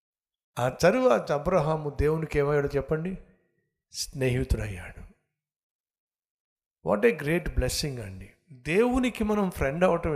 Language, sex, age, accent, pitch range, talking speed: Telugu, male, 60-79, native, 130-190 Hz, 95 wpm